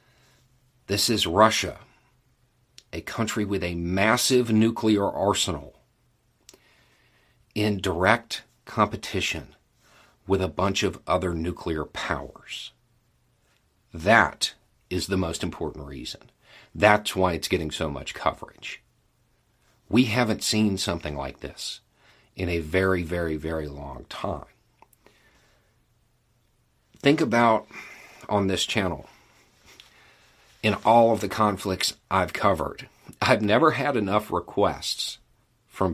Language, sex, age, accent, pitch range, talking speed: English, male, 50-69, American, 90-115 Hz, 105 wpm